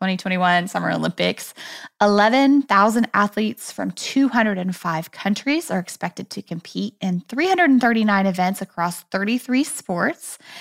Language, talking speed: English, 100 wpm